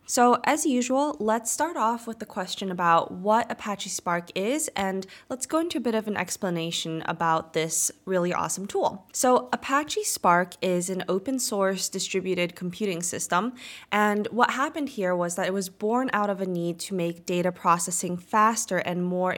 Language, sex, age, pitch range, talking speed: English, female, 20-39, 175-225 Hz, 180 wpm